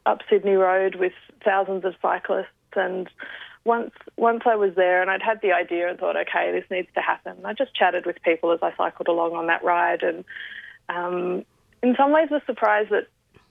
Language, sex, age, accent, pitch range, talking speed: English, female, 20-39, Australian, 175-205 Hz, 200 wpm